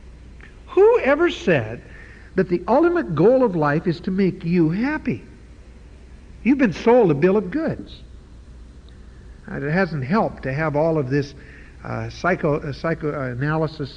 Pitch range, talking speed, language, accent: 125-170 Hz, 145 wpm, English, American